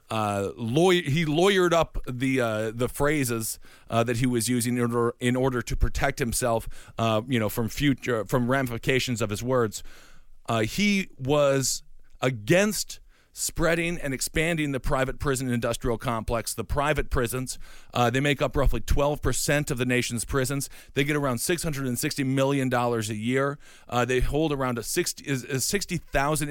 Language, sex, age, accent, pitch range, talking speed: English, male, 40-59, American, 120-150 Hz, 155 wpm